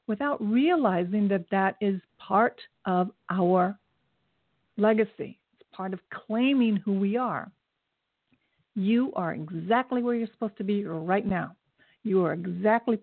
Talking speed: 135 wpm